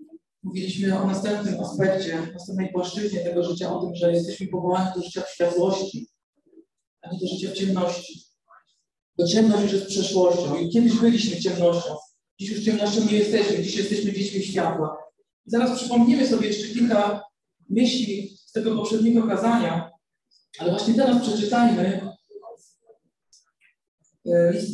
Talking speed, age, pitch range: 135 wpm, 40-59, 180-220 Hz